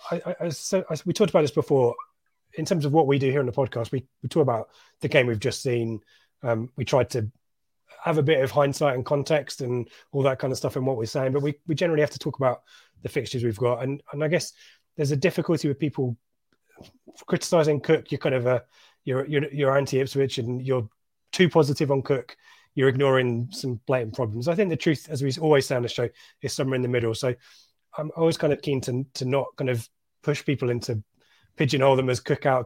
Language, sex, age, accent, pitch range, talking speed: English, male, 20-39, British, 120-145 Hz, 230 wpm